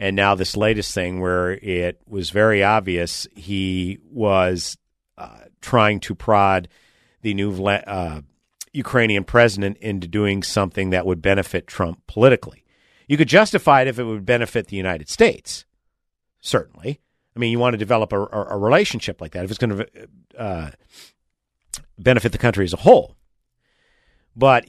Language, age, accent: English, 50-69, American